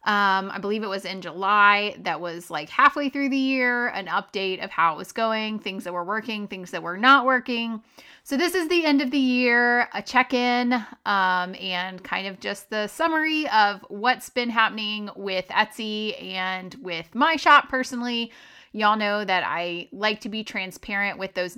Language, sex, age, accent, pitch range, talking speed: English, female, 30-49, American, 190-250 Hz, 185 wpm